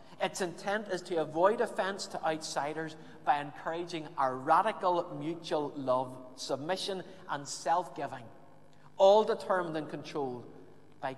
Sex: male